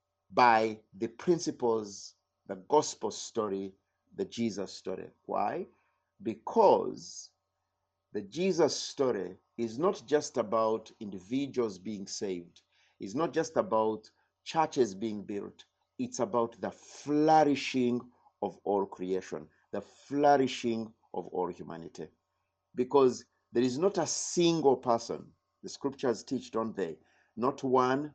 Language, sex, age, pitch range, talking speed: English, male, 50-69, 100-145 Hz, 115 wpm